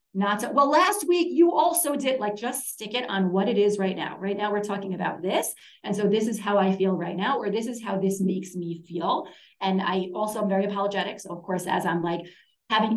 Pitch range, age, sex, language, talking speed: 185-220 Hz, 30-49, female, English, 250 wpm